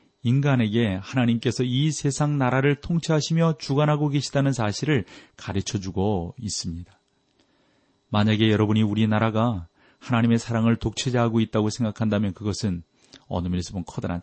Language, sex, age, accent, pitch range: Korean, male, 30-49, native, 105-140 Hz